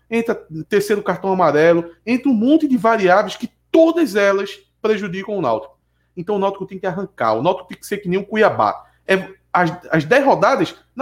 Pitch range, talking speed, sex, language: 180-250 Hz, 200 wpm, male, Portuguese